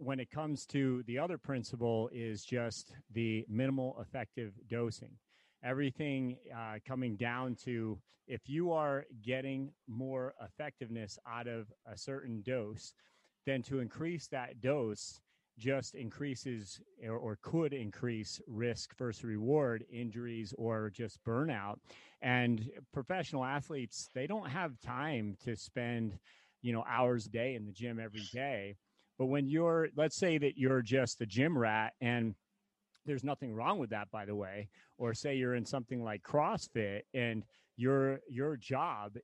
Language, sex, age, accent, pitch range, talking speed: English, male, 30-49, American, 115-135 Hz, 150 wpm